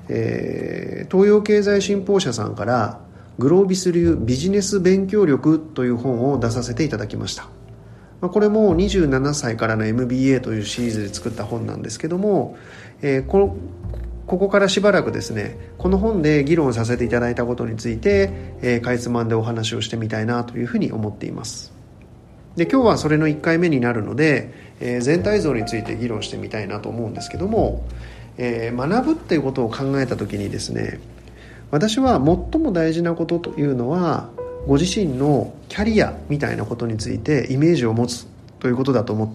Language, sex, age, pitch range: Japanese, male, 40-59, 110-155 Hz